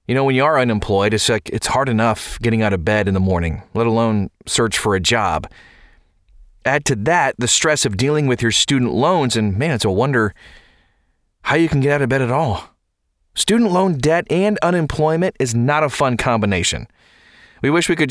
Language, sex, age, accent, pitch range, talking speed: English, male, 30-49, American, 105-140 Hz, 210 wpm